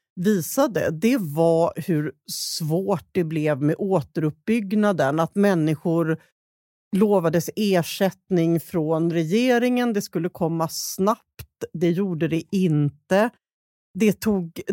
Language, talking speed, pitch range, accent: Swedish, 100 wpm, 165-210 Hz, native